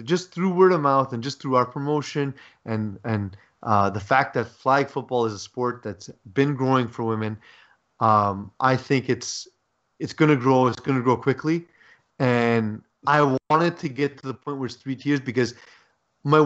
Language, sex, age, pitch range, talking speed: English, male, 30-49, 120-145 Hz, 195 wpm